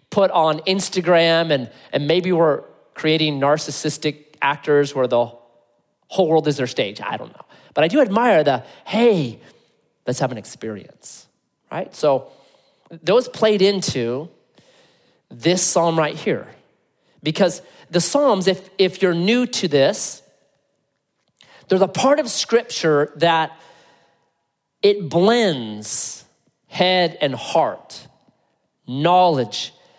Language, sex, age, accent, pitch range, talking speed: English, male, 30-49, American, 150-205 Hz, 120 wpm